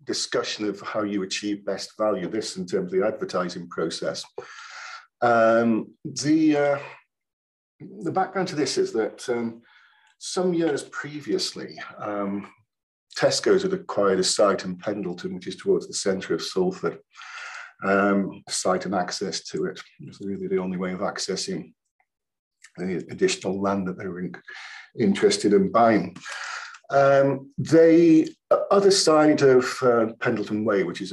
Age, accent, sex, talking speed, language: 50-69, British, male, 145 wpm, English